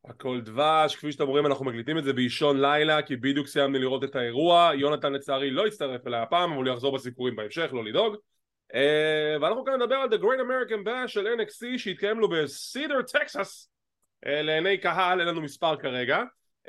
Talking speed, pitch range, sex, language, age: 135 wpm, 140-200 Hz, male, English, 20-39